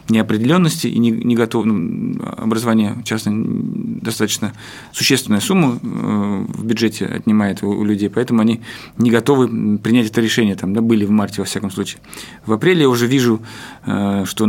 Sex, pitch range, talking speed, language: male, 105-120 Hz, 145 wpm, Russian